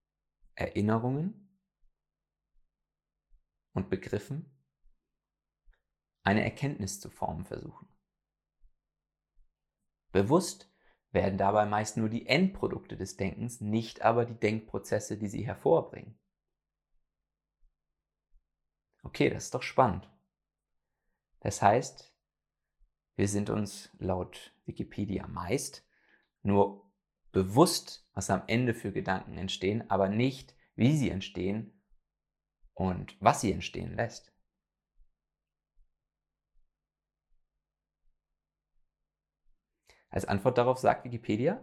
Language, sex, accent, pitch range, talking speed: English, male, German, 95-120 Hz, 90 wpm